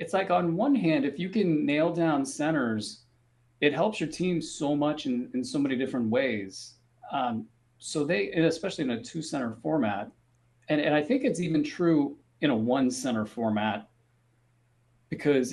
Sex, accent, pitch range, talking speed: male, American, 120-145 Hz, 180 wpm